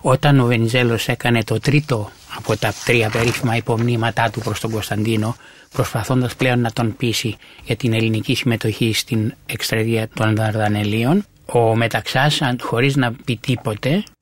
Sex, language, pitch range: male, Greek, 115-140 Hz